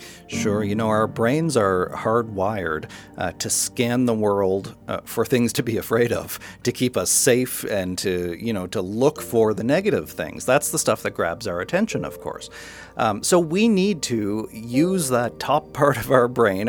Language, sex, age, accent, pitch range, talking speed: English, male, 40-59, American, 100-140 Hz, 190 wpm